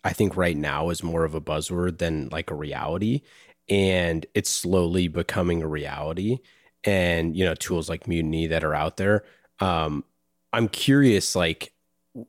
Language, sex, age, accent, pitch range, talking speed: English, male, 30-49, American, 80-105 Hz, 160 wpm